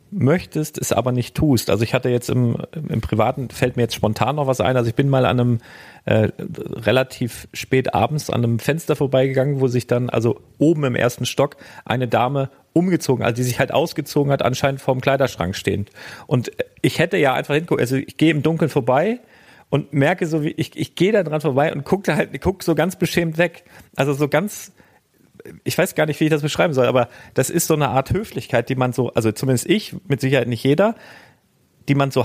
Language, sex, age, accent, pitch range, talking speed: German, male, 40-59, German, 125-155 Hz, 220 wpm